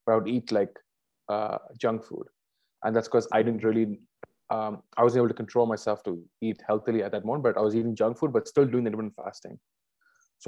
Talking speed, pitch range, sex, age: 225 wpm, 105-115 Hz, male, 20-39